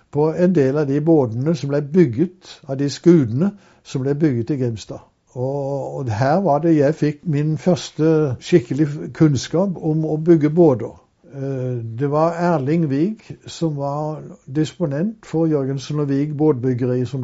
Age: 60-79